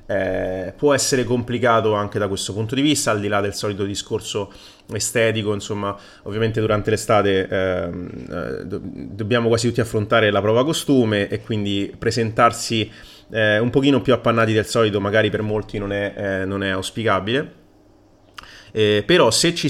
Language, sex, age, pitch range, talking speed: Italian, male, 30-49, 100-120 Hz, 155 wpm